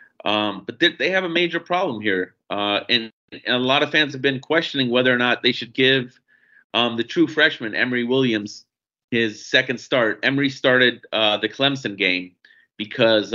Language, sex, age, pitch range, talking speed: English, male, 30-49, 110-135 Hz, 180 wpm